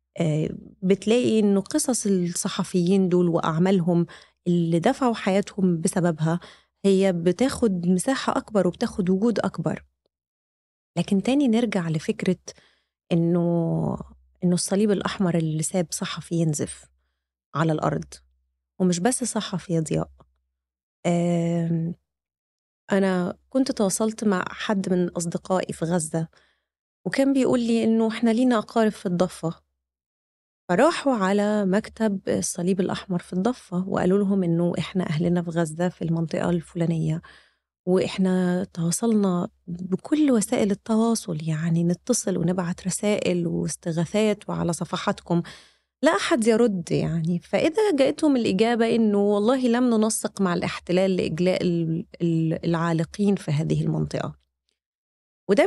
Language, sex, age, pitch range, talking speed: Arabic, female, 20-39, 170-210 Hz, 110 wpm